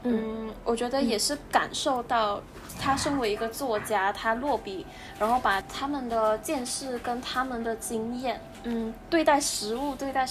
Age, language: 10-29, Chinese